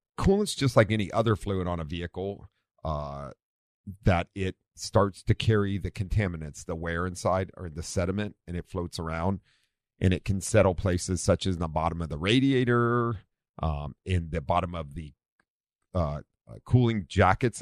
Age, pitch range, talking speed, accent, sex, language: 40-59, 80-100 Hz, 165 wpm, American, male, English